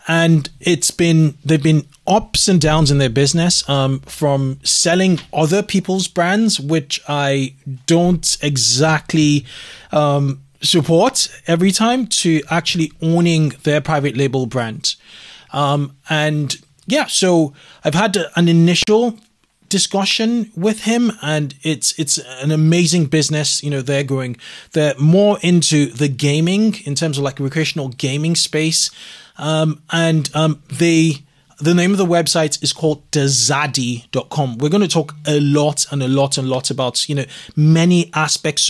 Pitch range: 140-170 Hz